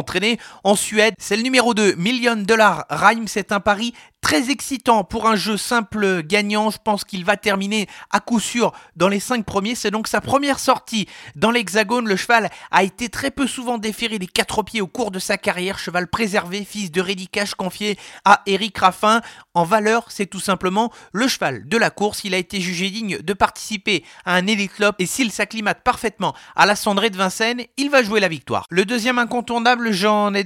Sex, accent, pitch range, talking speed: male, French, 185-220 Hz, 205 wpm